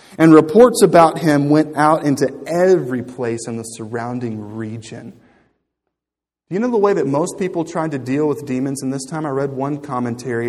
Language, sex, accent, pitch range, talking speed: English, male, American, 130-175 Hz, 185 wpm